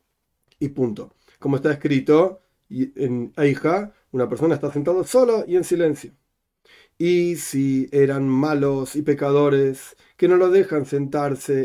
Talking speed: 135 wpm